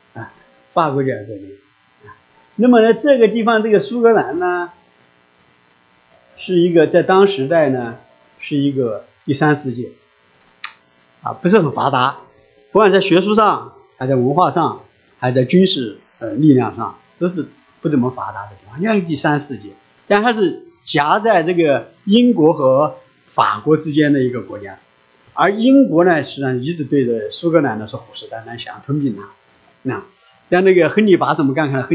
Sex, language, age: male, English, 50-69